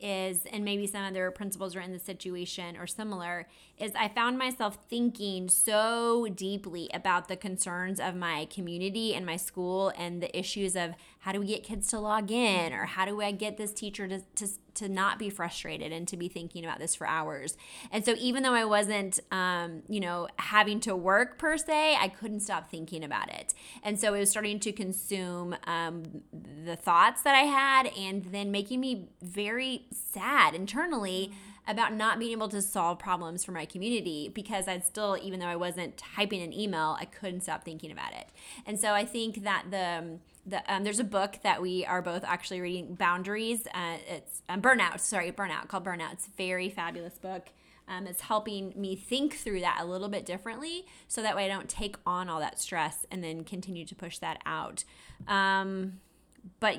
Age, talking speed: 20-39, 200 wpm